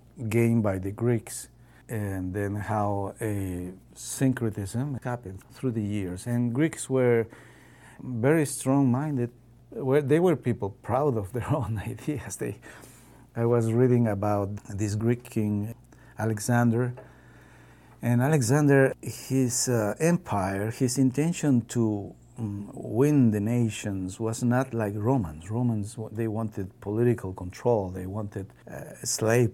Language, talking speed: English, 115 wpm